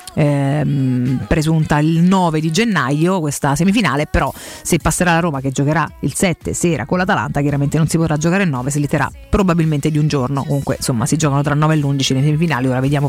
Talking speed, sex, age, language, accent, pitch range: 210 wpm, female, 40-59, Italian, native, 145-185 Hz